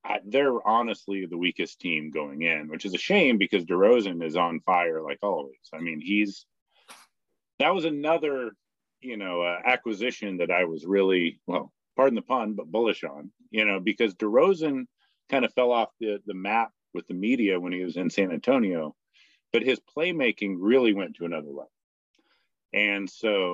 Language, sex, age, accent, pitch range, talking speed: English, male, 40-59, American, 90-120 Hz, 175 wpm